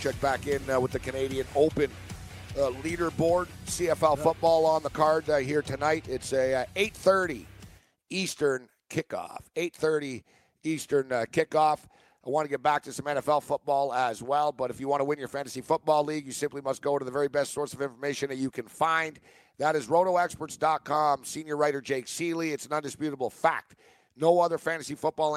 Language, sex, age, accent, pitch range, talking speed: English, male, 50-69, American, 140-160 Hz, 185 wpm